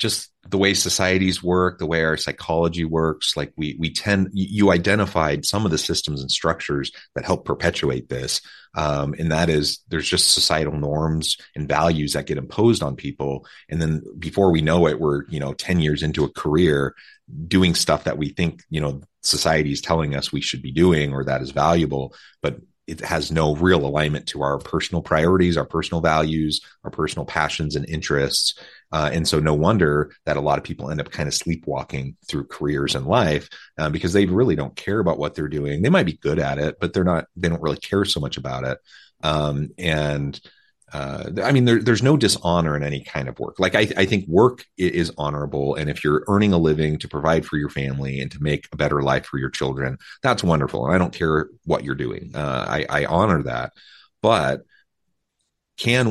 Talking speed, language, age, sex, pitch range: 205 wpm, English, 30-49, male, 70-85 Hz